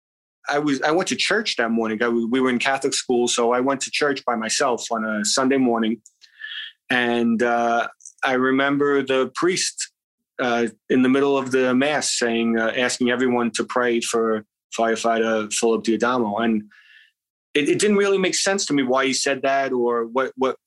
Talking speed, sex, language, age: 185 wpm, male, English, 30-49